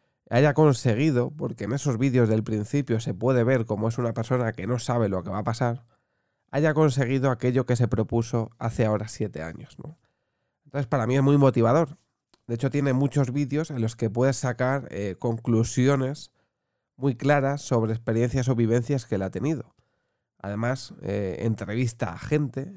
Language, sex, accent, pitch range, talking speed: Spanish, male, Spanish, 110-140 Hz, 175 wpm